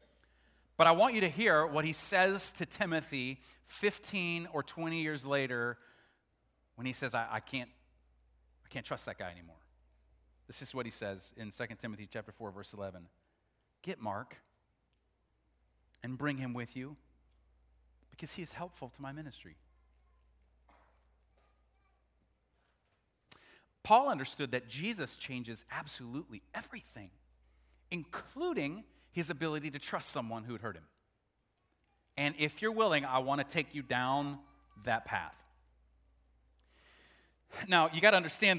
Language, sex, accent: English, male, American